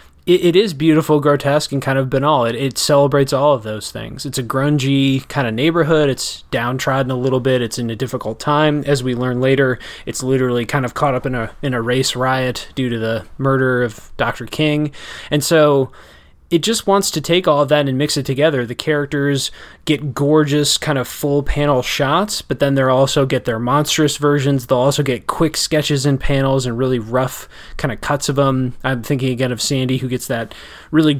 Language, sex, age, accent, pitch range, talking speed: English, male, 20-39, American, 130-150 Hz, 205 wpm